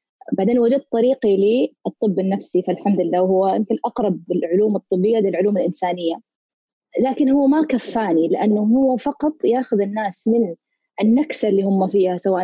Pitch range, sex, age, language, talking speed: 195-250 Hz, female, 20-39, Arabic, 135 wpm